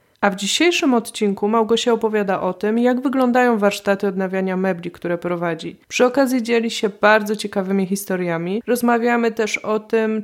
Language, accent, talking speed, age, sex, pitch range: Polish, native, 150 wpm, 20-39, female, 200-230 Hz